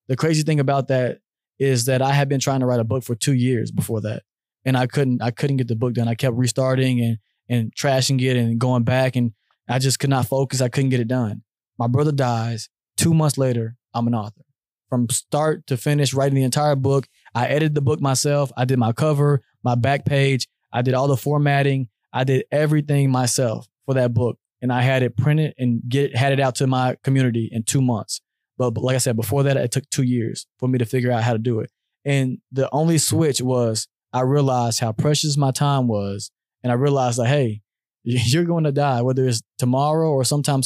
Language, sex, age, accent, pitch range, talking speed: English, male, 20-39, American, 120-140 Hz, 225 wpm